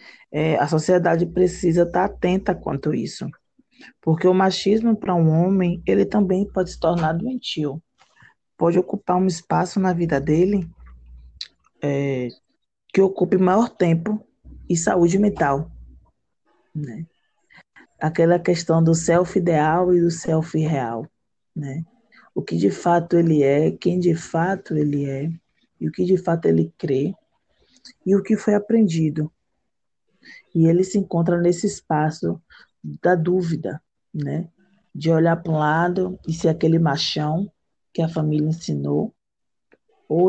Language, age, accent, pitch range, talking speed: Portuguese, 20-39, Brazilian, 155-185 Hz, 140 wpm